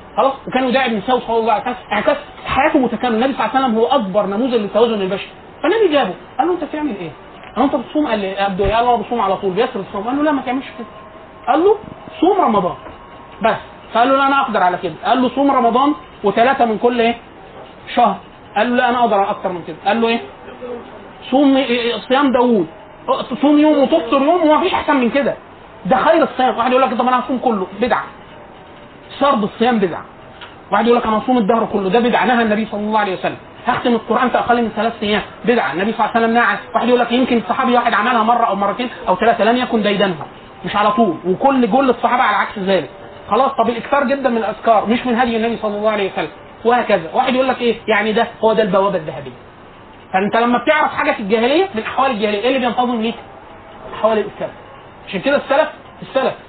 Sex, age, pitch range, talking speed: male, 30-49, 210-260 Hz, 210 wpm